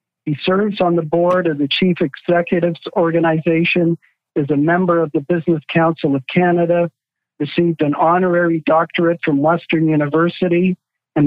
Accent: American